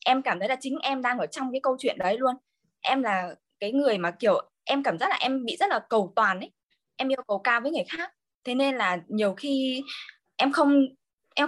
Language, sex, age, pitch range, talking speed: Vietnamese, female, 20-39, 205-280 Hz, 240 wpm